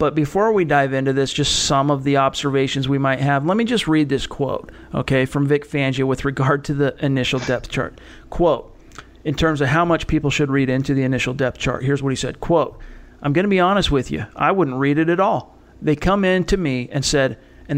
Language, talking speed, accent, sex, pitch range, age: English, 240 wpm, American, male, 135-165 Hz, 40-59